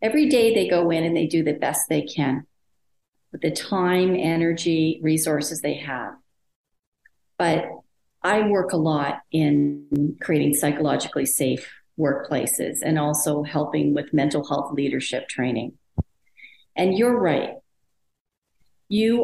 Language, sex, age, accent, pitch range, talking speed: English, female, 40-59, American, 155-200 Hz, 130 wpm